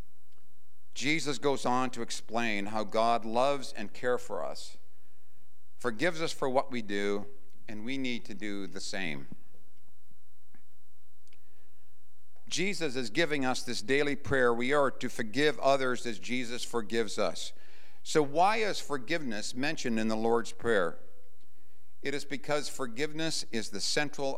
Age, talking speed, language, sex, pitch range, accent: 50-69, 140 wpm, English, male, 90-140 Hz, American